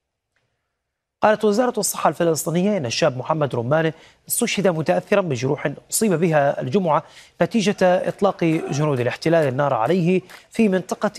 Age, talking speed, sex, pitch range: 30-49, 120 wpm, male, 145-190 Hz